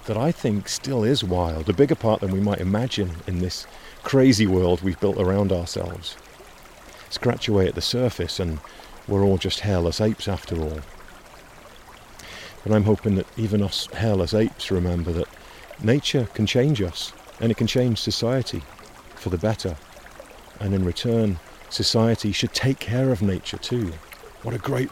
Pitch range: 90-115 Hz